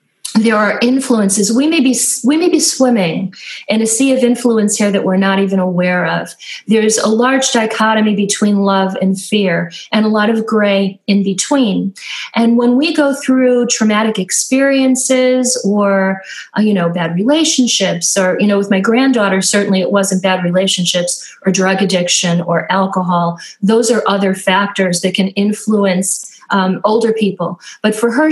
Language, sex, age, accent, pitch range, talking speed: English, female, 40-59, American, 195-250 Hz, 165 wpm